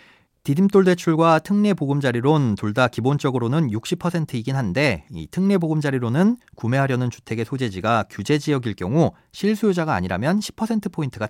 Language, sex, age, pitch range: Korean, male, 40-59, 115-175 Hz